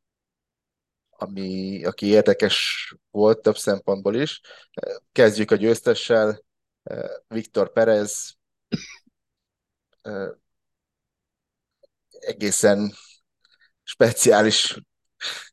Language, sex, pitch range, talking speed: Hungarian, male, 100-145 Hz, 55 wpm